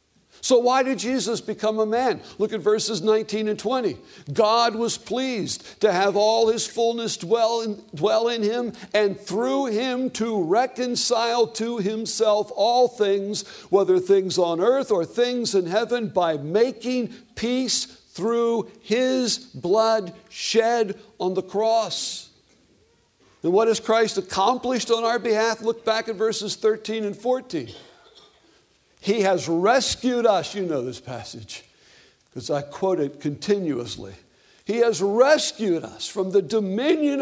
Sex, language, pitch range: male, English, 195-235 Hz